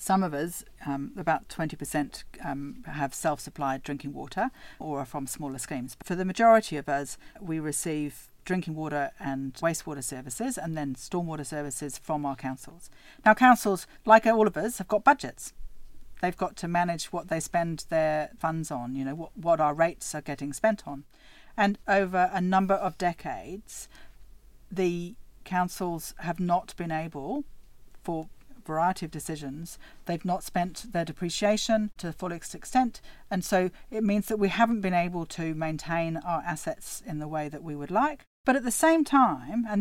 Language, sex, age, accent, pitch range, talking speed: English, female, 50-69, British, 150-190 Hz, 175 wpm